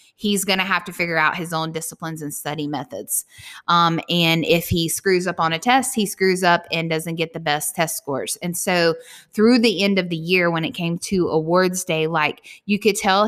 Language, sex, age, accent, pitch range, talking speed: English, female, 20-39, American, 165-190 Hz, 225 wpm